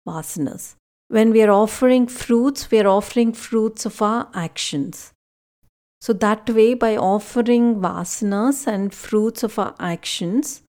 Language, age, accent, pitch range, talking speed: English, 50-69, Indian, 185-230 Hz, 135 wpm